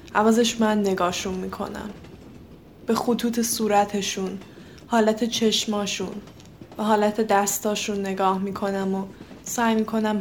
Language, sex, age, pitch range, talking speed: Persian, female, 10-29, 205-225 Hz, 100 wpm